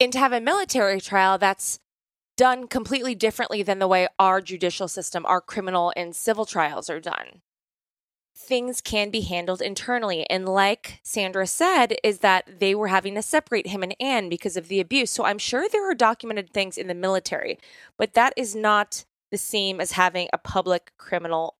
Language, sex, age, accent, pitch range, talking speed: English, female, 20-39, American, 190-245 Hz, 185 wpm